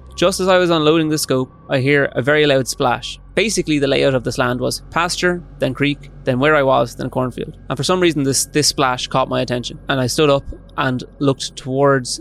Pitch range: 125-145 Hz